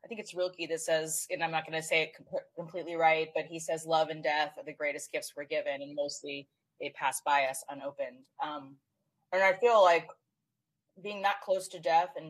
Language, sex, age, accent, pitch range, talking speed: English, female, 20-39, American, 155-195 Hz, 220 wpm